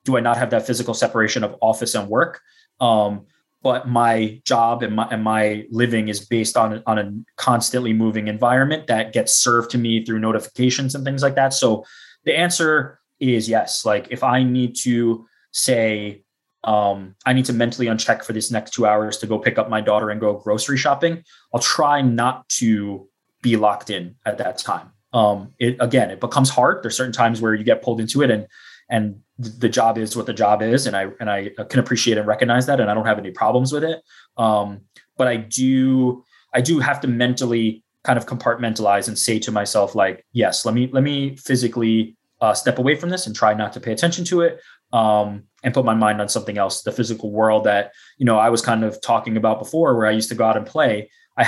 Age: 20-39